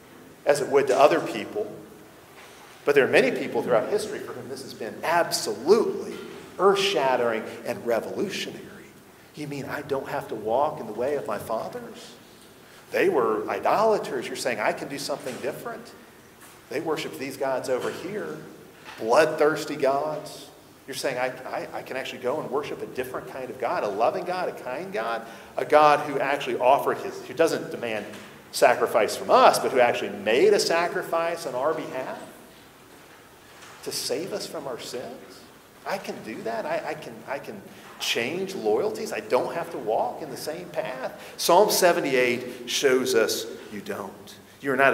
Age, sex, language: 40-59, male, English